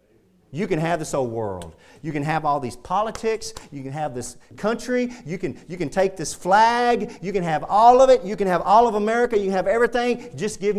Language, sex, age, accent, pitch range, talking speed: English, male, 40-59, American, 125-210 Hz, 235 wpm